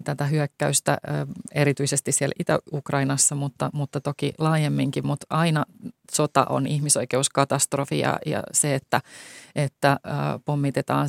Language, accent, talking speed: Finnish, native, 115 wpm